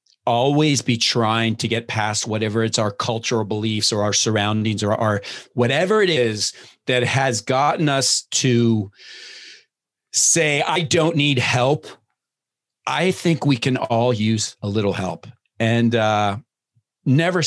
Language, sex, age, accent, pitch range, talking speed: English, male, 40-59, American, 105-135 Hz, 140 wpm